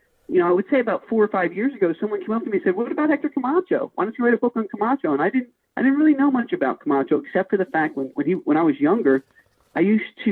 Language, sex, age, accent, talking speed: English, male, 40-59, American, 315 wpm